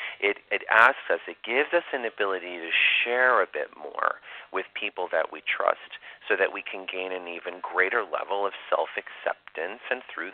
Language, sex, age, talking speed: English, male, 40-59, 185 wpm